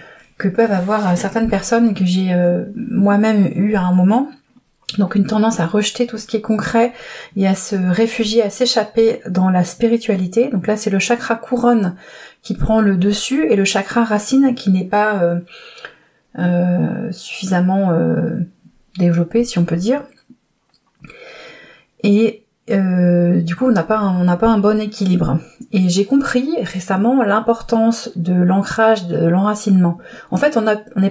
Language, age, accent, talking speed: French, 30-49, French, 160 wpm